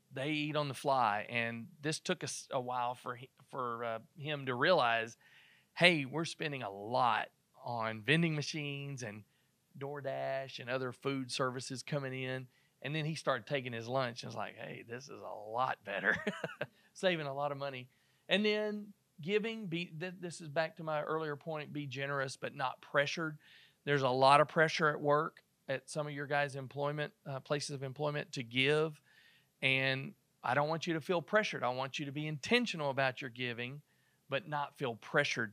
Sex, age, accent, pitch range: male, 40-59, American, 130-160 Hz